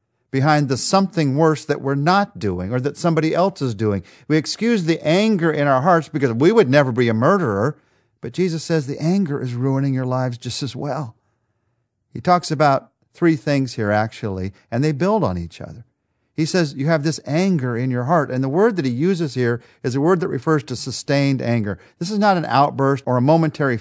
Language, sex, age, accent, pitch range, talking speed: English, male, 50-69, American, 120-165 Hz, 215 wpm